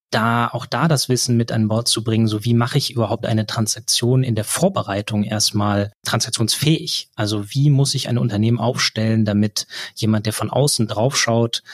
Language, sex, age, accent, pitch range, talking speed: German, male, 20-39, German, 110-125 Hz, 180 wpm